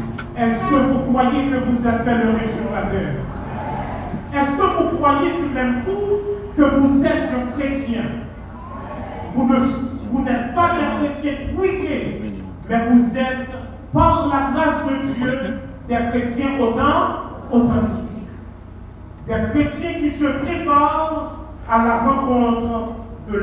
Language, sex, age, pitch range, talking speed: French, male, 40-59, 235-305 Hz, 140 wpm